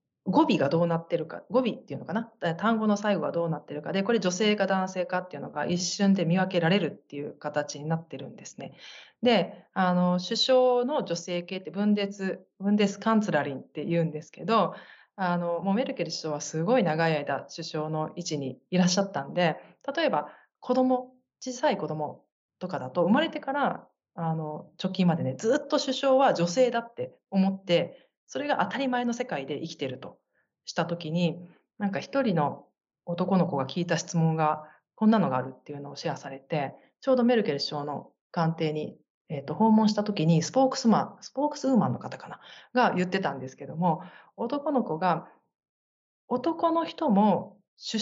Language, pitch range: Japanese, 160-235 Hz